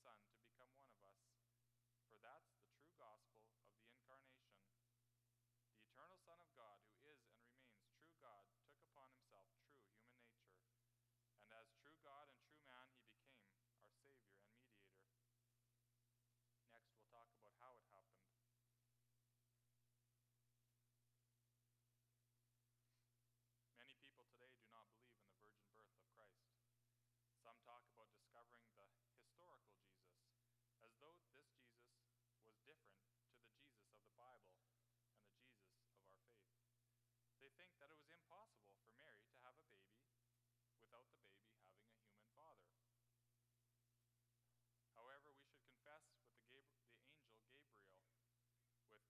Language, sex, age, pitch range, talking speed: English, male, 30-49, 115-120 Hz, 140 wpm